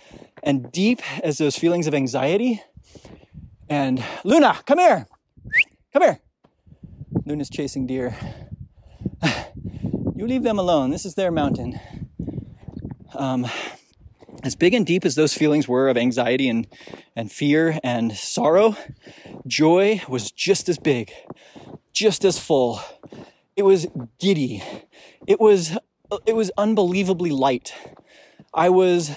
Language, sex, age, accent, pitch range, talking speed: English, male, 30-49, American, 135-195 Hz, 120 wpm